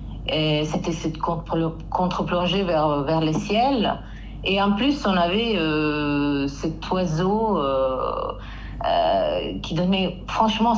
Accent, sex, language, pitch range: French, female, English, 150-190 Hz